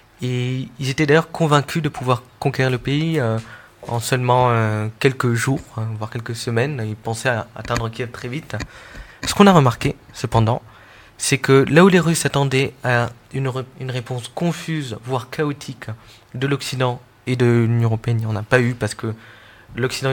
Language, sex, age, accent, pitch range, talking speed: French, male, 20-39, French, 110-135 Hz, 180 wpm